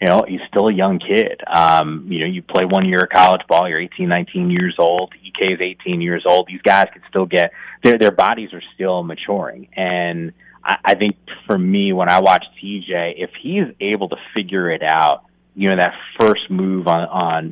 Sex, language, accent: male, English, American